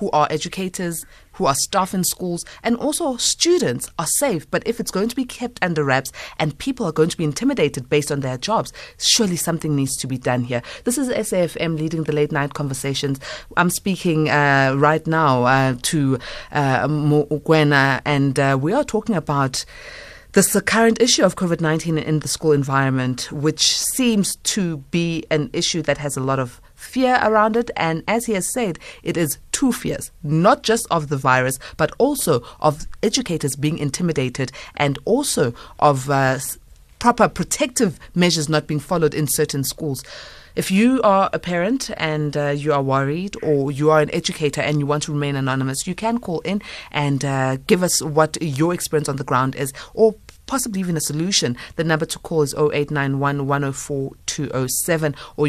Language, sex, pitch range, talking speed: English, female, 140-185 Hz, 180 wpm